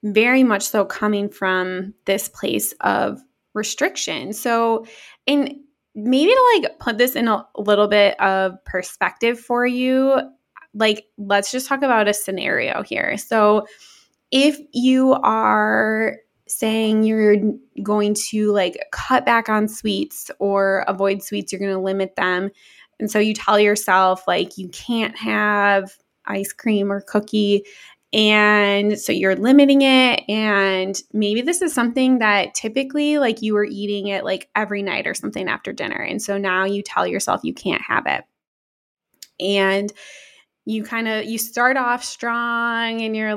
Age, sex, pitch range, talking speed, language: 20-39, female, 200-240 Hz, 150 wpm, English